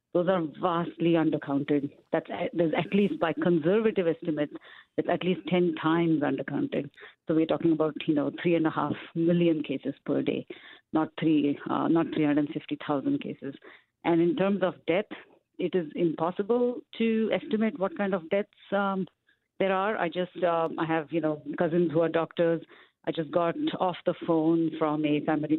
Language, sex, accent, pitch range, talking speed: English, female, Indian, 155-185 Hz, 170 wpm